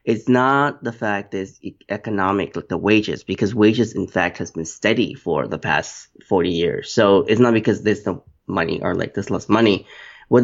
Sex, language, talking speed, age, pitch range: male, English, 200 wpm, 20-39, 100-115 Hz